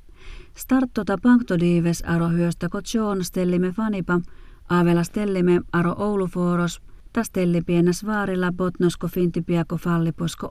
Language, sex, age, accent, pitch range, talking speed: Finnish, female, 30-49, native, 170-185 Hz, 95 wpm